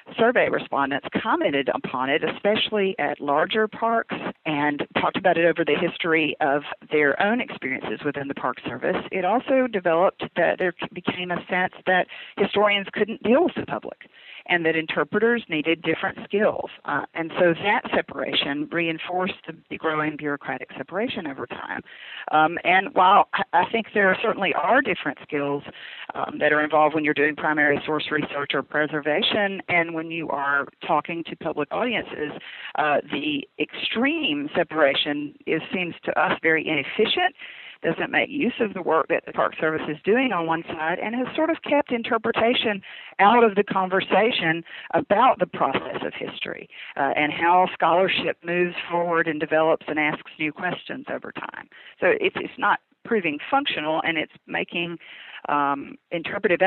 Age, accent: 40-59, American